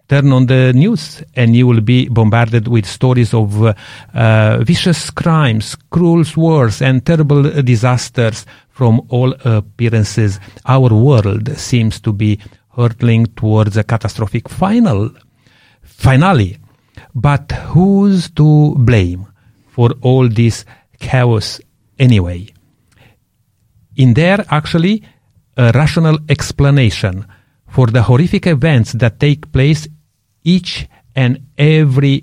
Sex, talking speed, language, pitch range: male, 110 wpm, English, 115-145 Hz